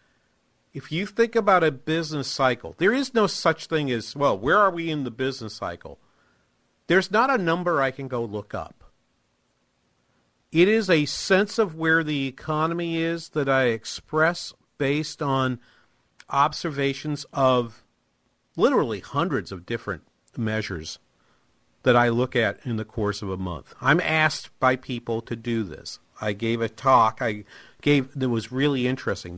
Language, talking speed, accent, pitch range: English, 160 wpm, American, 110-145 Hz